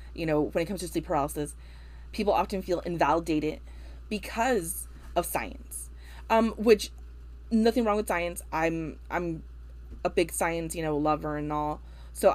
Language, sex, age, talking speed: English, female, 20-39, 155 wpm